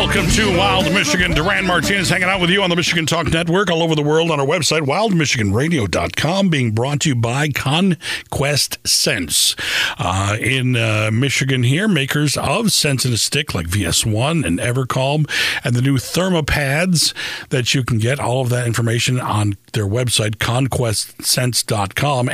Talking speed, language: 165 wpm, English